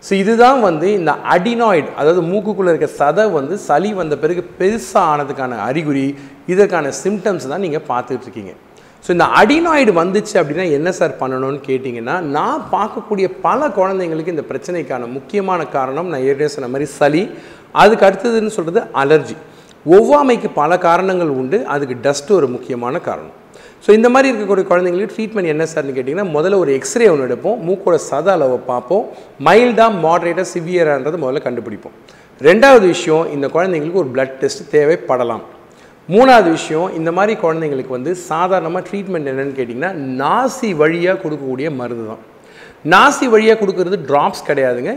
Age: 40-59